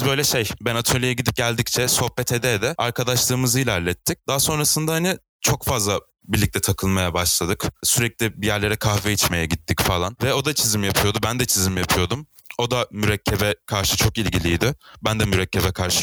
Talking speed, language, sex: 165 wpm, Turkish, male